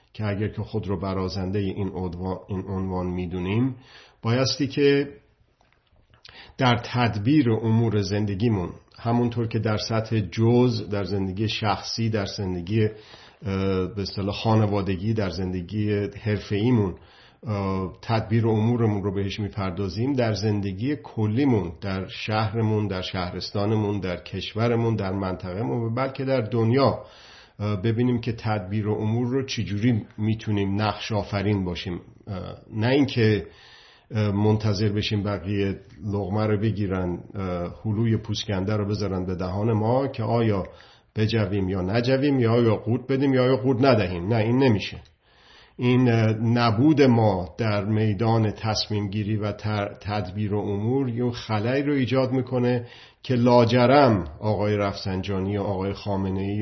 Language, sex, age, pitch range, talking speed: Persian, male, 50-69, 100-120 Hz, 130 wpm